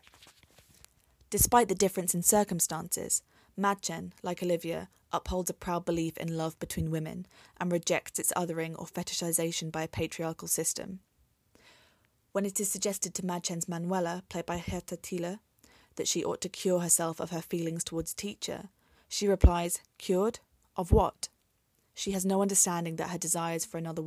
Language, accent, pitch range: English, British, 165-185 Hz